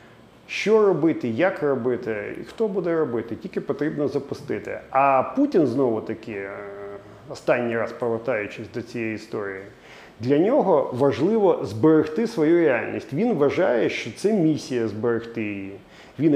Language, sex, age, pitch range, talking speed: Ukrainian, male, 40-59, 110-155 Hz, 130 wpm